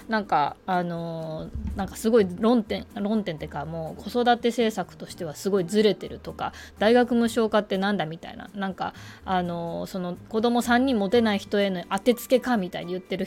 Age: 20-39